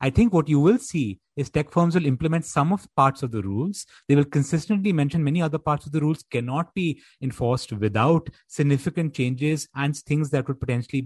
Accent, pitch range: Indian, 125-160 Hz